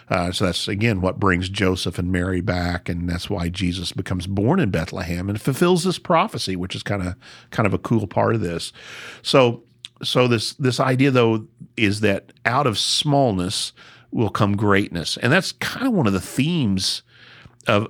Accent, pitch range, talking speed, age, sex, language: American, 90-115 Hz, 190 wpm, 50-69, male, English